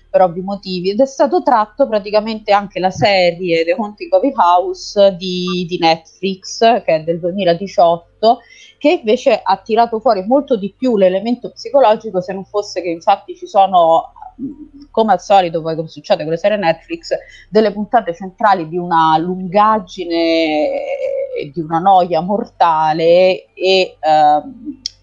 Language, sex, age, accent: Italian, female, 30-49, native